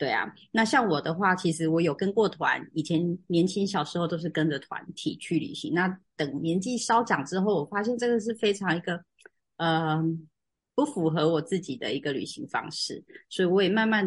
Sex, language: female, Chinese